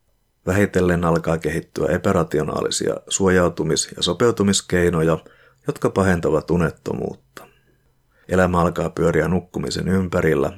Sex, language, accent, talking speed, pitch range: male, Finnish, native, 85 wpm, 85-100 Hz